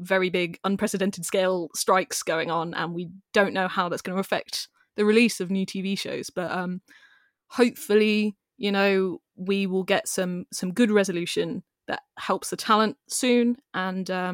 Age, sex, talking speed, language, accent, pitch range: 20-39, female, 165 wpm, English, British, 185-235 Hz